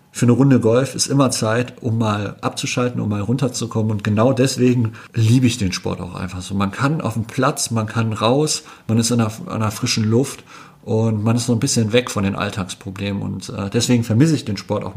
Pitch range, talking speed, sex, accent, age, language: 105-120 Hz, 225 wpm, male, German, 40-59, German